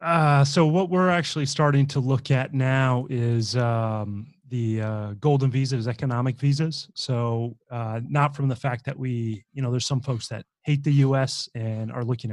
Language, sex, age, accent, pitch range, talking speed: English, male, 30-49, American, 115-135 Hz, 180 wpm